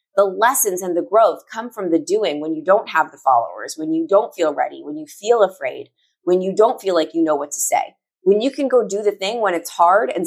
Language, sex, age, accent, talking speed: English, female, 30-49, American, 265 wpm